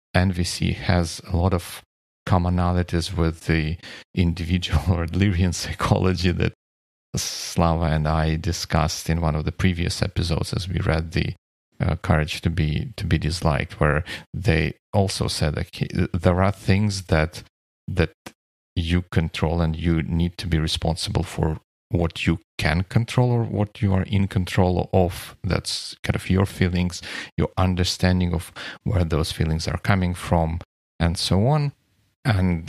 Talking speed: 150 wpm